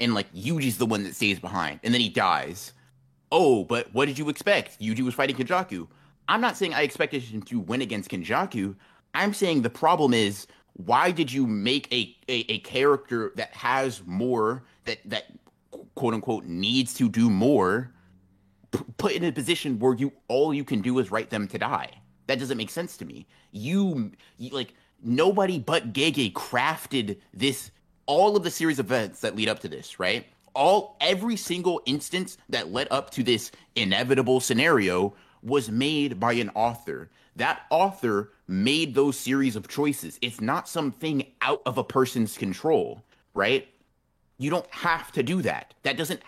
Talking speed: 175 wpm